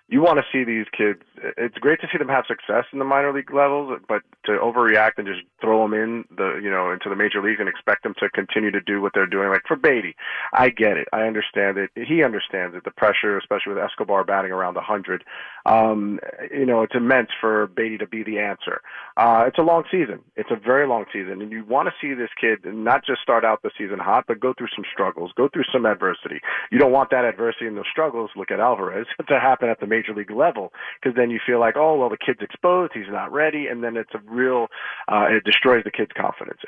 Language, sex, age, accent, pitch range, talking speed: English, male, 40-59, American, 105-120 Hz, 245 wpm